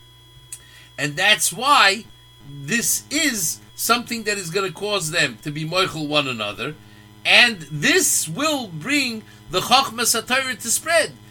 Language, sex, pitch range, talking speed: English, male, 150-235 Hz, 135 wpm